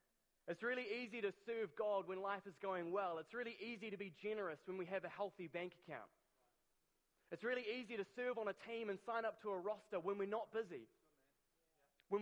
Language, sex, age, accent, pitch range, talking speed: English, male, 30-49, Australian, 175-210 Hz, 210 wpm